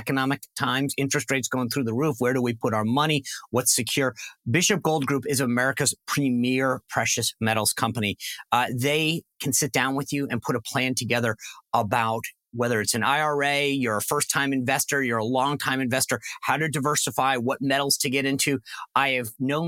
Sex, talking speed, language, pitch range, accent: male, 185 wpm, English, 120-150 Hz, American